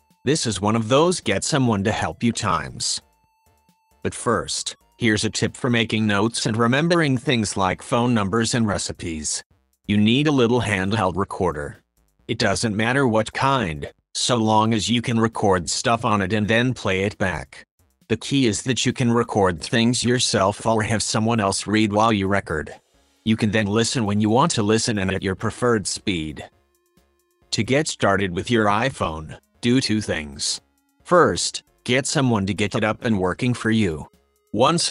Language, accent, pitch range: English, American, 100-120 Hz